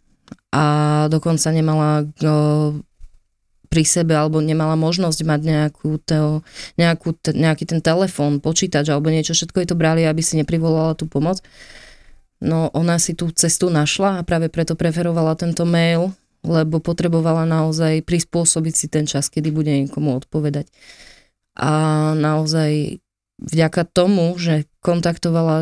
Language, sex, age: Slovak, female, 20-39